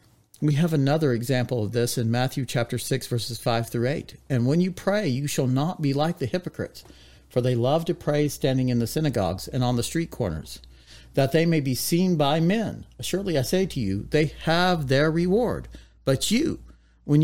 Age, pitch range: 50-69, 120-160 Hz